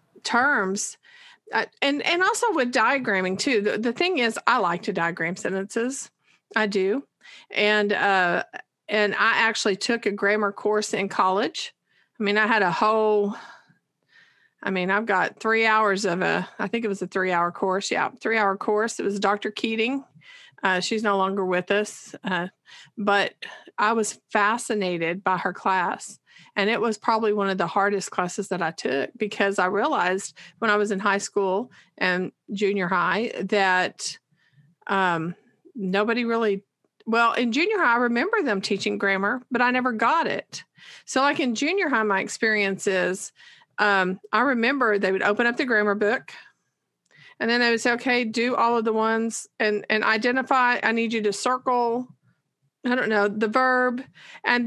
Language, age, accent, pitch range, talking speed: English, 40-59, American, 195-235 Hz, 170 wpm